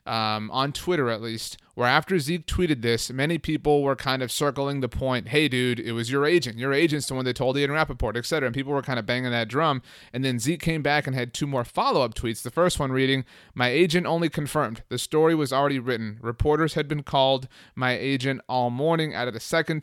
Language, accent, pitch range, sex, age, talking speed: English, American, 120-145 Hz, male, 30-49, 235 wpm